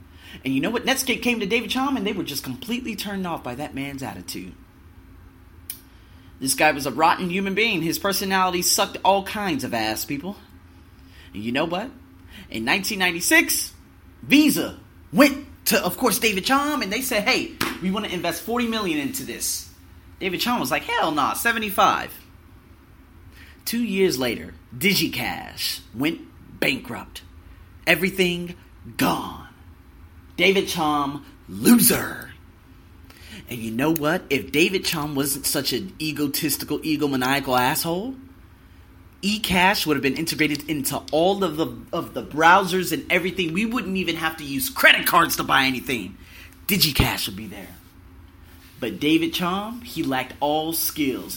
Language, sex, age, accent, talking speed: English, male, 30-49, American, 150 wpm